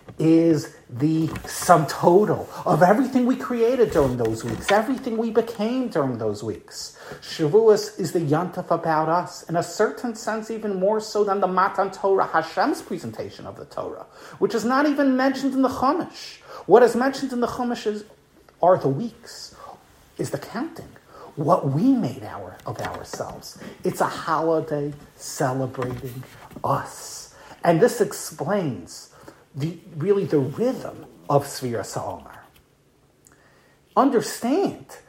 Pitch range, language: 145-230 Hz, English